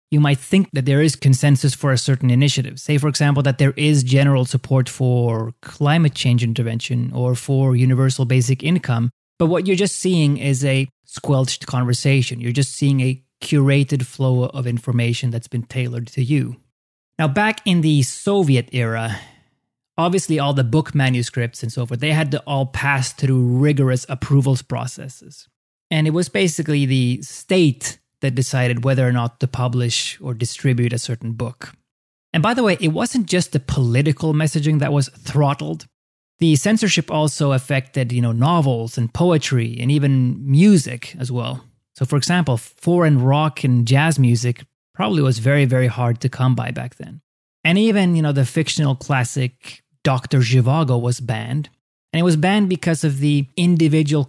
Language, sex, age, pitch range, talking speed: English, male, 30-49, 125-155 Hz, 170 wpm